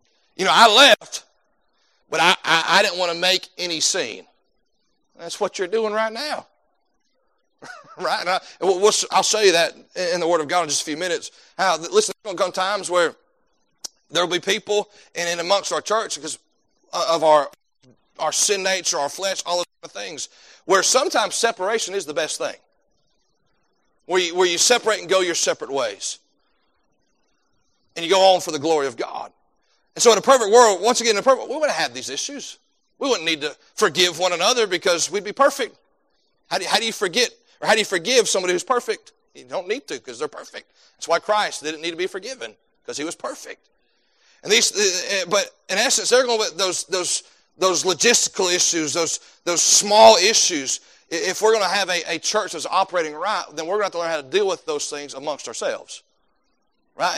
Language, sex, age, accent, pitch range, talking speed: English, male, 40-59, American, 170-230 Hz, 210 wpm